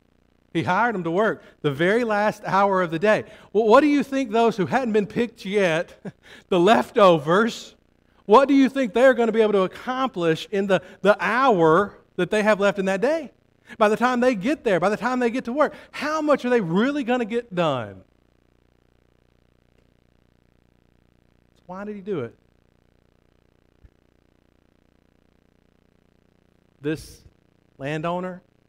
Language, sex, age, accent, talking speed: English, male, 50-69, American, 160 wpm